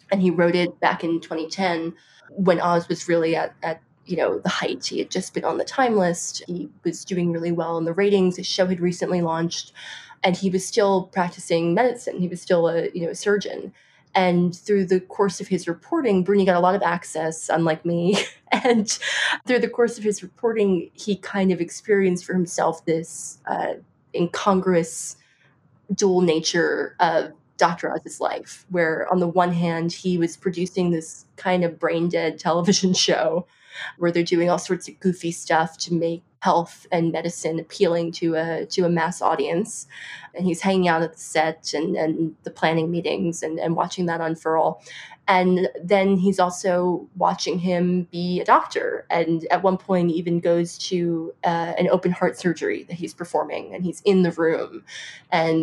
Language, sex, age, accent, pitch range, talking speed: English, female, 20-39, American, 165-185 Hz, 185 wpm